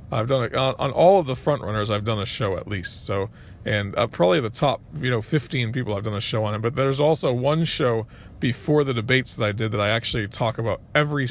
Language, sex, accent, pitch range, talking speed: English, male, American, 110-140 Hz, 260 wpm